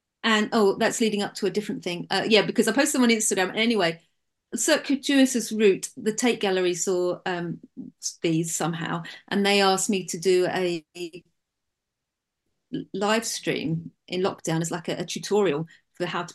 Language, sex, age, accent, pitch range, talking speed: English, female, 30-49, British, 170-205 Hz, 170 wpm